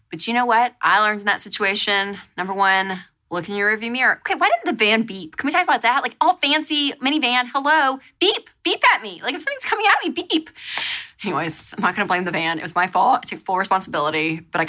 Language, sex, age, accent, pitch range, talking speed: English, female, 20-39, American, 185-270 Hz, 245 wpm